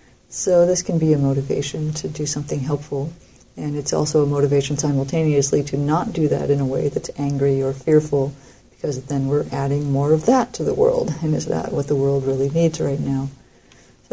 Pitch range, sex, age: 140-155 Hz, female, 50-69